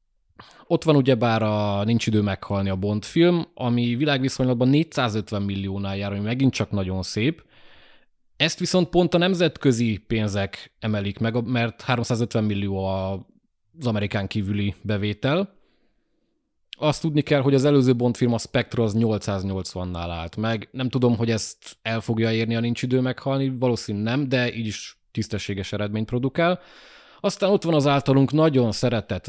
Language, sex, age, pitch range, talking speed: Hungarian, male, 20-39, 100-140 Hz, 155 wpm